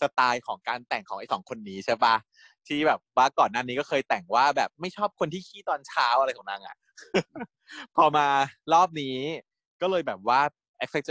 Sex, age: male, 20-39